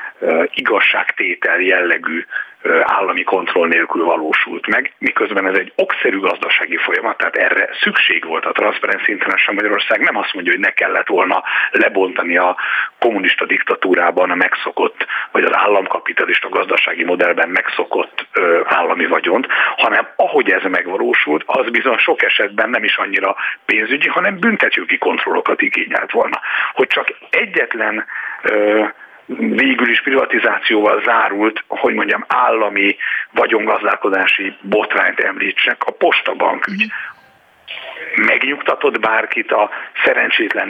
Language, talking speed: Hungarian, 115 wpm